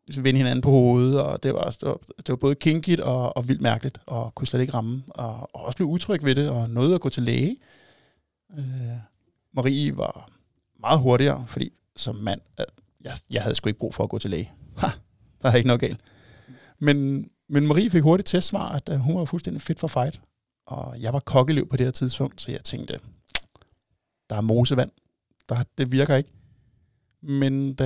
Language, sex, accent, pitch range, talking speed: Danish, male, native, 120-140 Hz, 200 wpm